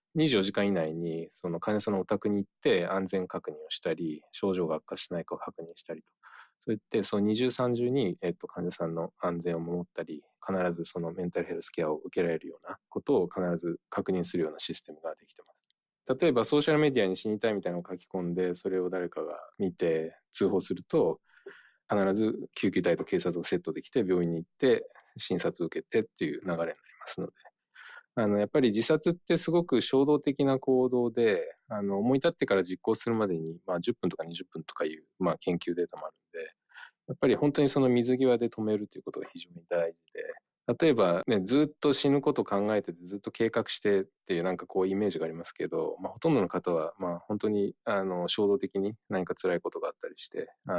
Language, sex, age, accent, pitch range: Japanese, male, 20-39, native, 90-135 Hz